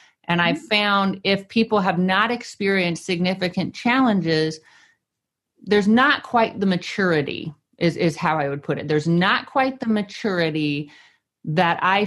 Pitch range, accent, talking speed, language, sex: 155-200 Hz, American, 145 wpm, English, female